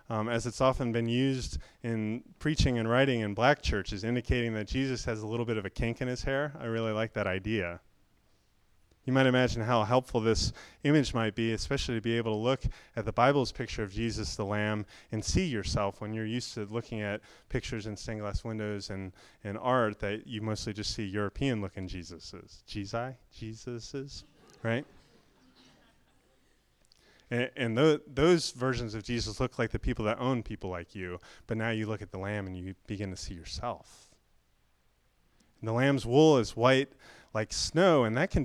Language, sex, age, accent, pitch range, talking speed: English, male, 30-49, American, 105-125 Hz, 185 wpm